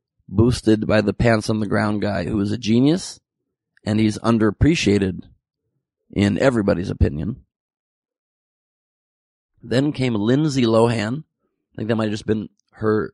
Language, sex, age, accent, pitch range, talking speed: English, male, 30-49, American, 105-125 Hz, 130 wpm